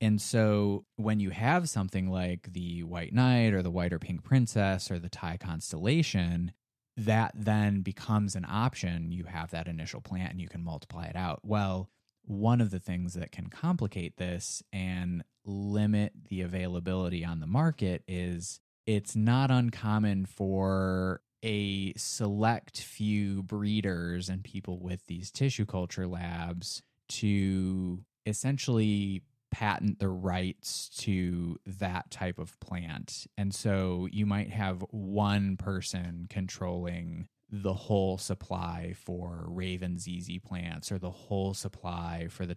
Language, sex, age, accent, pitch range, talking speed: English, male, 20-39, American, 90-105 Hz, 140 wpm